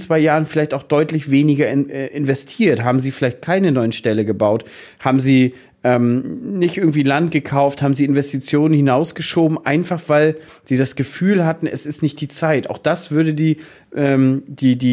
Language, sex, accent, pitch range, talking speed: German, male, German, 125-160 Hz, 165 wpm